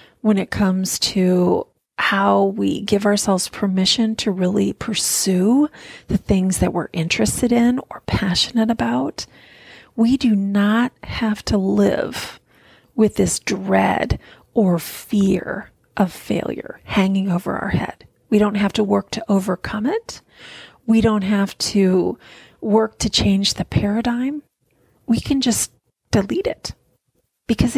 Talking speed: 130 wpm